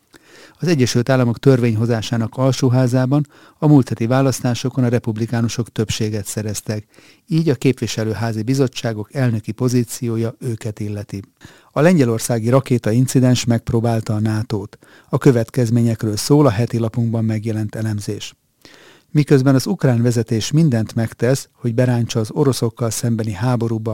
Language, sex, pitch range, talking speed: Hungarian, male, 115-130 Hz, 120 wpm